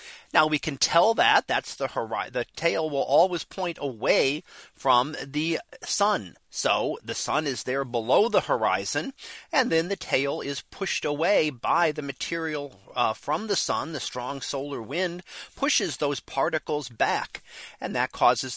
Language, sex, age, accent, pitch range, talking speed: English, male, 40-59, American, 130-170 Hz, 160 wpm